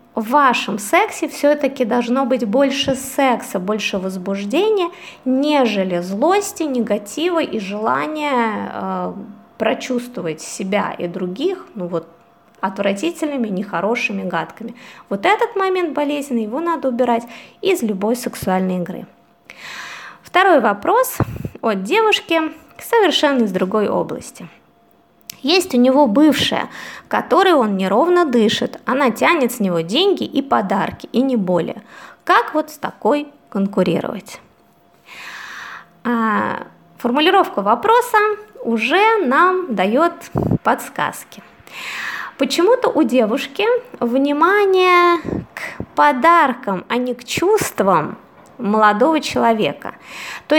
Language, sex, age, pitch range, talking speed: Russian, female, 20-39, 220-330 Hz, 100 wpm